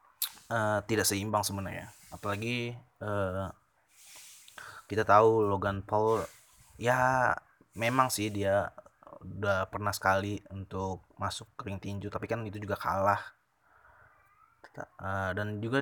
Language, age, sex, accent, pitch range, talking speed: Indonesian, 20-39, male, native, 100-115 Hz, 110 wpm